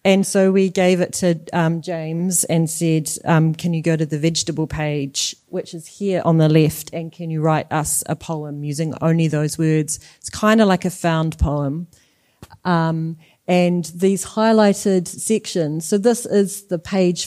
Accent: Australian